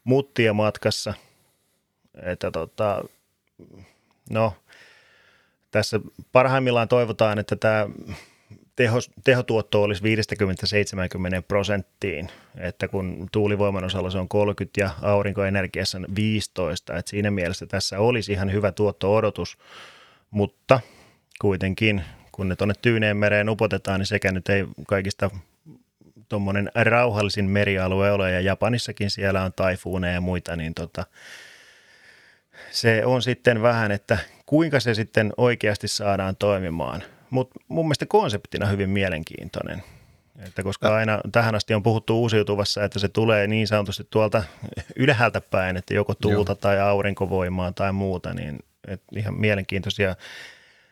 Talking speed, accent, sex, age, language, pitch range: 120 wpm, native, male, 30-49, Finnish, 95-110 Hz